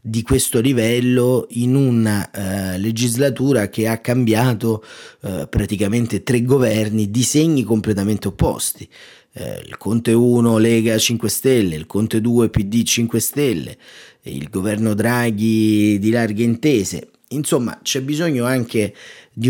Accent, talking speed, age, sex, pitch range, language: native, 125 wpm, 30-49, male, 100-125 Hz, Italian